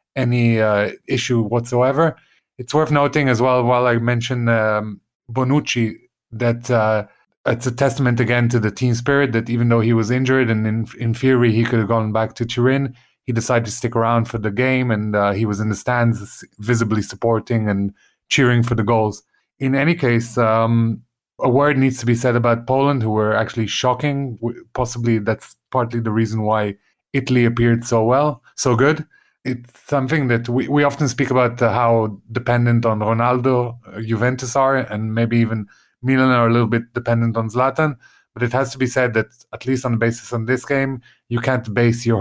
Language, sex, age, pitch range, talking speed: English, male, 30-49, 110-130 Hz, 195 wpm